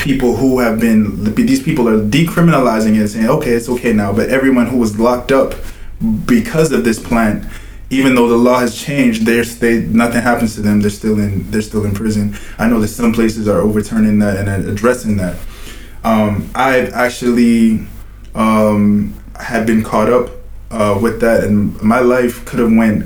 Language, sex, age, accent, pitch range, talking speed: English, male, 20-39, American, 100-115 Hz, 185 wpm